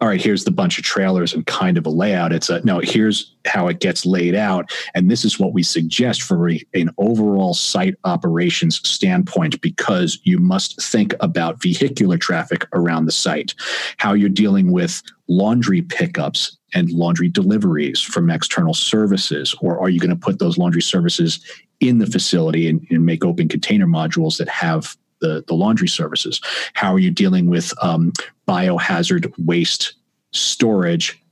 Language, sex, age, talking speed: English, male, 40-59, 170 wpm